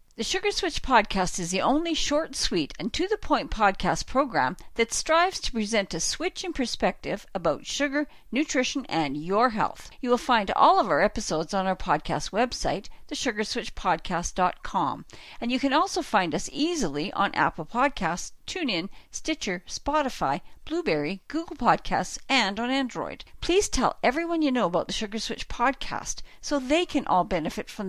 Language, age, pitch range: English, 50-69, 195-285 Hz